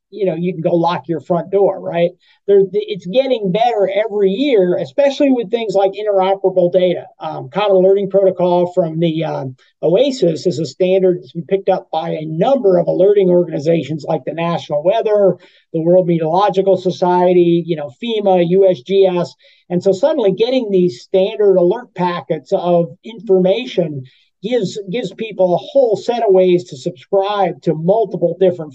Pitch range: 175-205 Hz